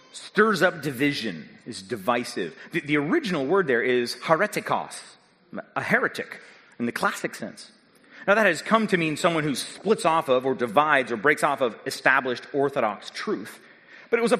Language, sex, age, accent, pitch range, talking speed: English, male, 30-49, American, 130-175 Hz, 175 wpm